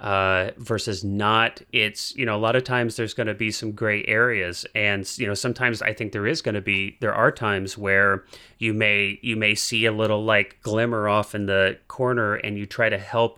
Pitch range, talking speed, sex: 105-125 Hz, 225 wpm, male